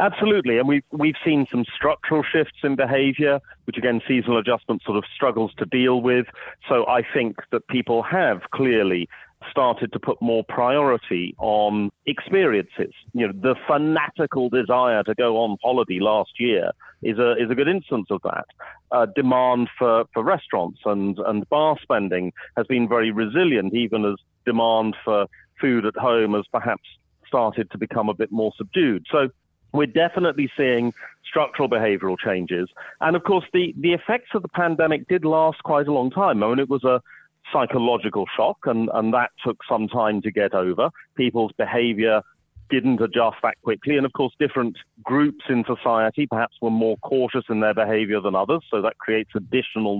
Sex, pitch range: male, 110-145 Hz